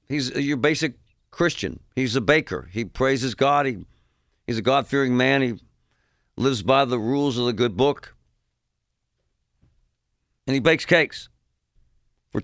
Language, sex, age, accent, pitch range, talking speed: English, male, 50-69, American, 105-140 Hz, 135 wpm